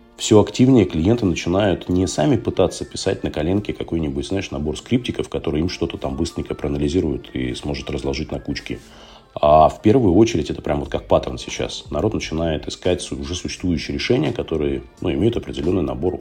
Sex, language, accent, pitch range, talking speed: male, Russian, native, 70-90 Hz, 170 wpm